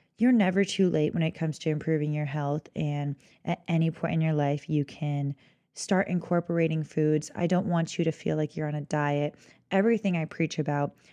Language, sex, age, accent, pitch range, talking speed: English, female, 20-39, American, 150-175 Hz, 205 wpm